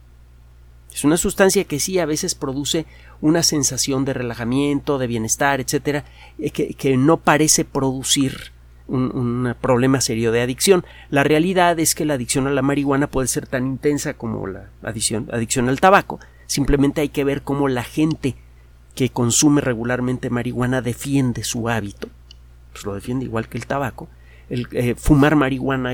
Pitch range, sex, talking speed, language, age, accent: 110-145 Hz, male, 160 wpm, Spanish, 40-59, Mexican